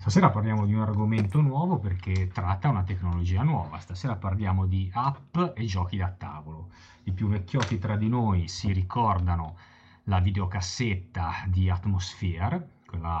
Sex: male